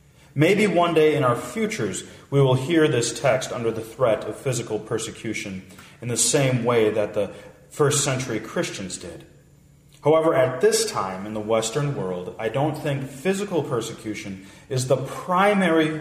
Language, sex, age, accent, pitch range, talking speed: English, male, 30-49, American, 125-160 Hz, 160 wpm